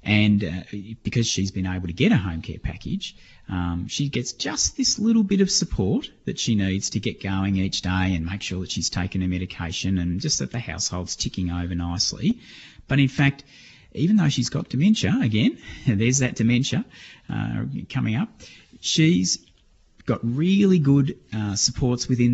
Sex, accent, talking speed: male, Australian, 180 wpm